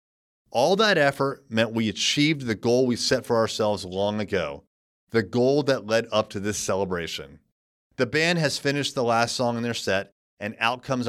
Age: 30-49